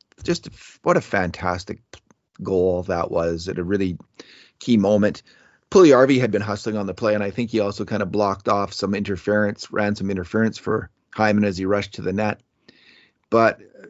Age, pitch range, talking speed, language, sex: 30-49, 90-110 Hz, 185 wpm, English, male